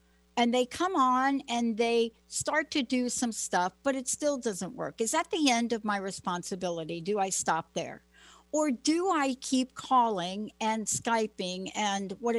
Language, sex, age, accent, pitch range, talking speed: English, female, 60-79, American, 190-260 Hz, 175 wpm